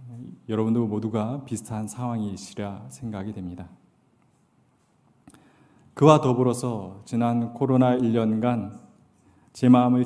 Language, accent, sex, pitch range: Korean, native, male, 110-135 Hz